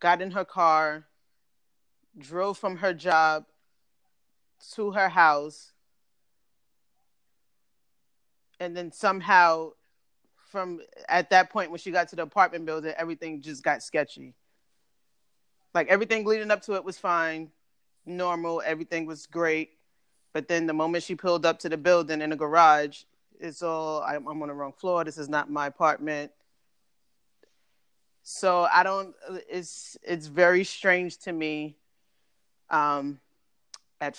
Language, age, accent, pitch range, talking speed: English, 30-49, American, 155-180 Hz, 135 wpm